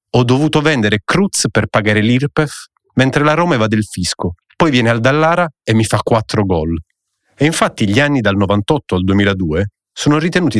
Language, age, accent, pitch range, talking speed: Italian, 40-59, native, 100-145 Hz, 180 wpm